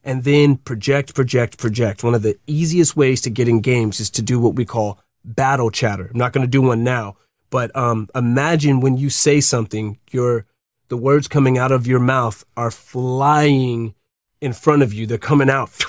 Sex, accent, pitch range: male, American, 125-155 Hz